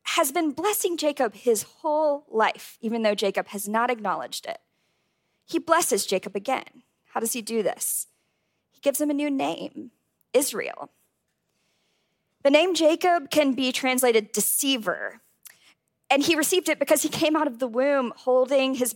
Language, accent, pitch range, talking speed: English, American, 220-285 Hz, 160 wpm